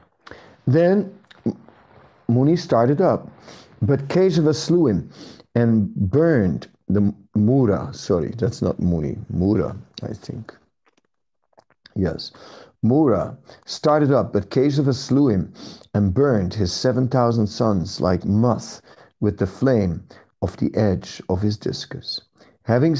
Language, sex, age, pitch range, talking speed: English, male, 50-69, 105-140 Hz, 115 wpm